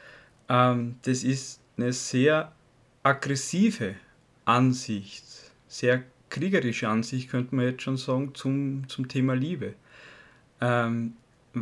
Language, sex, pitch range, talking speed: German, male, 120-145 Hz, 100 wpm